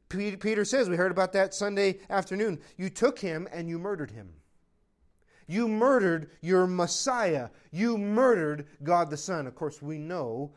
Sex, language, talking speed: male, English, 160 wpm